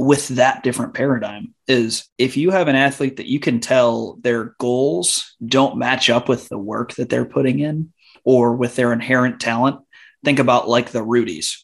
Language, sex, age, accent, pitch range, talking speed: English, male, 20-39, American, 120-135 Hz, 185 wpm